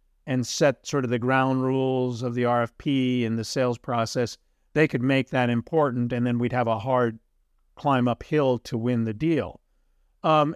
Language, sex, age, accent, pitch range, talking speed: English, male, 50-69, American, 120-150 Hz, 180 wpm